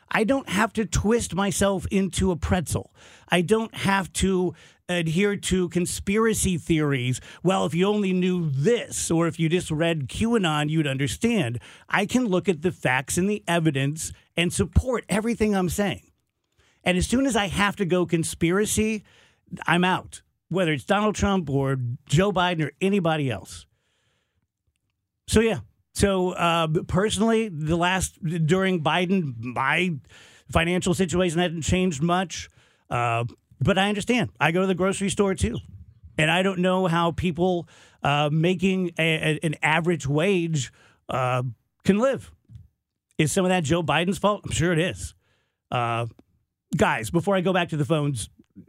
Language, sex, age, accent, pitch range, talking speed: English, male, 50-69, American, 150-195 Hz, 155 wpm